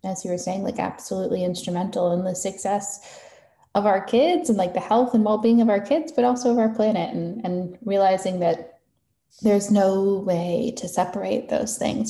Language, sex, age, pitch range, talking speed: English, female, 10-29, 160-205 Hz, 190 wpm